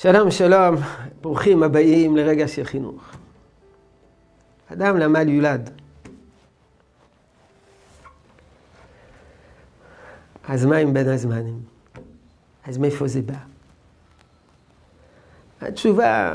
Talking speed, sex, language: 75 wpm, male, Hebrew